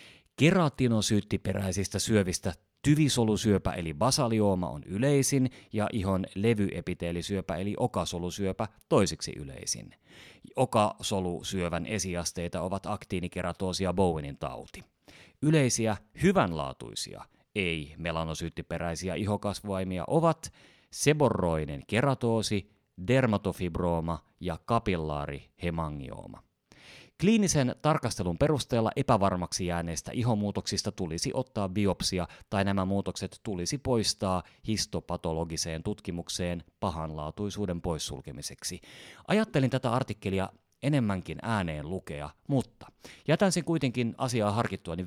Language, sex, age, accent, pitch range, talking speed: Finnish, male, 30-49, native, 90-125 Hz, 80 wpm